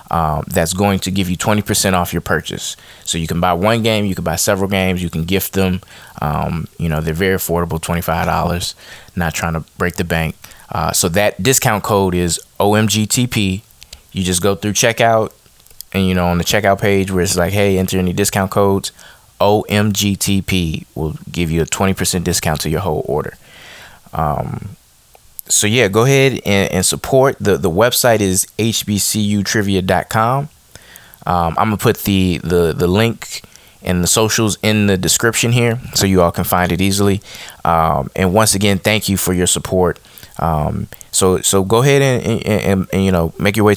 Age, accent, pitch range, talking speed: 20-39, American, 90-105 Hz, 180 wpm